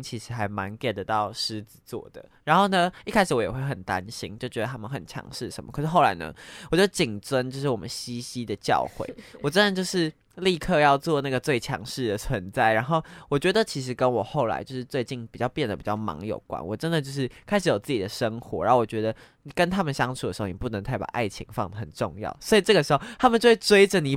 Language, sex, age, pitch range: Chinese, male, 20-39, 110-155 Hz